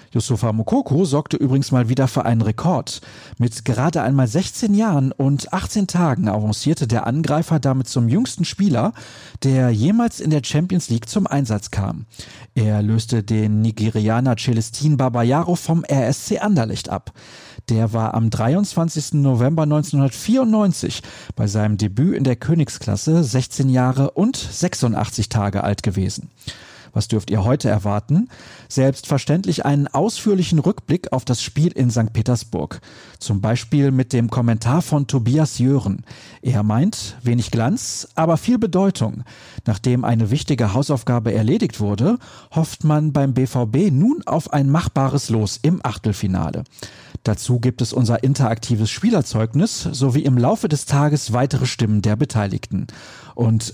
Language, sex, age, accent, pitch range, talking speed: German, male, 40-59, German, 115-150 Hz, 140 wpm